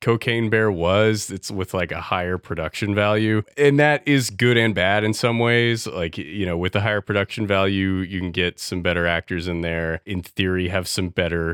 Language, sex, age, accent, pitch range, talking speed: English, male, 30-49, American, 85-115 Hz, 210 wpm